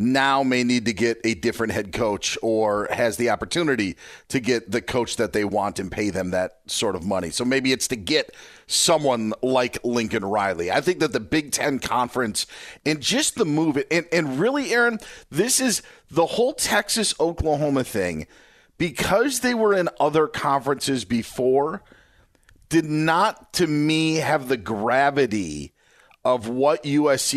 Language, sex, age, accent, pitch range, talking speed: English, male, 40-59, American, 115-155 Hz, 160 wpm